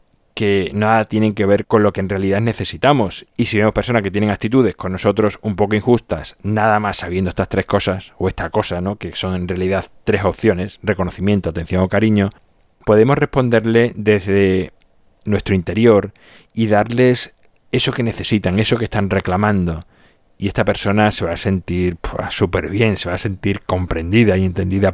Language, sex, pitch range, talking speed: Spanish, male, 95-125 Hz, 175 wpm